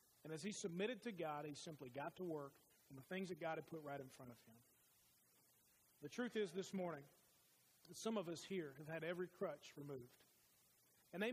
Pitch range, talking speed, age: 150-200 Hz, 210 wpm, 40-59